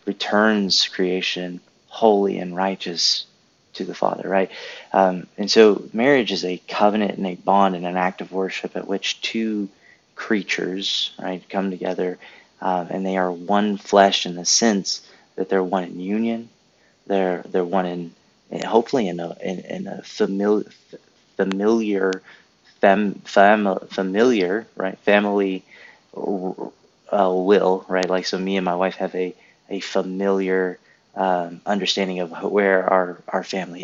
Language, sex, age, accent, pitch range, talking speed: English, male, 30-49, American, 90-100 Hz, 140 wpm